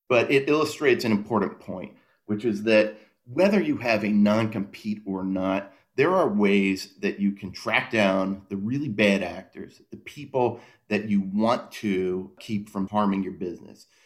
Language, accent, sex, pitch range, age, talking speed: English, American, male, 100-120 Hz, 40-59, 165 wpm